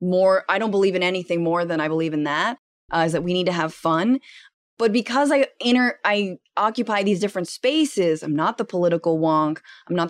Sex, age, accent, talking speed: female, 20-39, American, 215 wpm